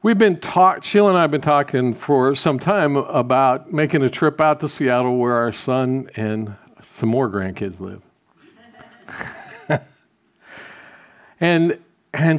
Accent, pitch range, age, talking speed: American, 125-170 Hz, 50-69, 140 wpm